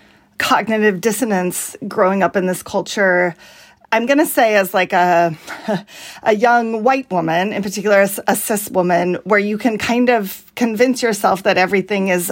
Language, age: English, 40-59